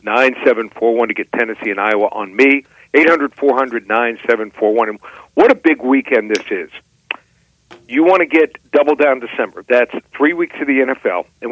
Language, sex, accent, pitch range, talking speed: English, male, American, 115-150 Hz, 155 wpm